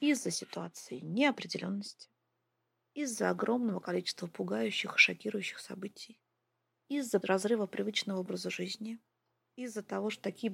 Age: 30-49